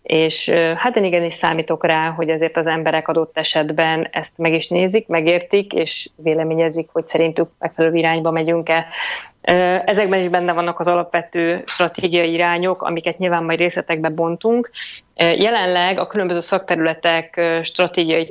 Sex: female